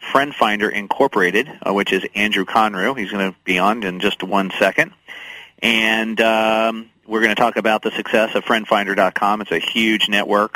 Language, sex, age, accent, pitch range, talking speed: English, male, 40-59, American, 95-110 Hz, 175 wpm